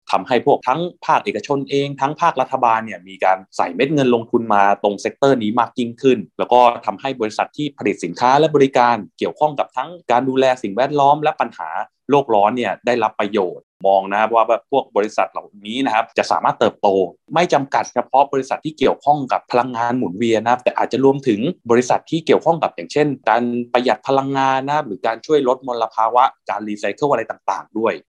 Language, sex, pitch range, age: English, male, 110-135 Hz, 20-39